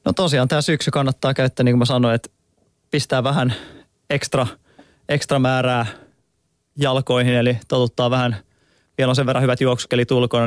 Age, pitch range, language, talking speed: 20-39, 120-135 Hz, Finnish, 155 wpm